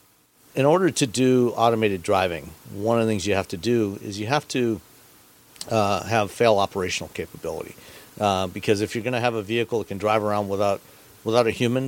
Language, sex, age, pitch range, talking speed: English, male, 50-69, 100-120 Hz, 200 wpm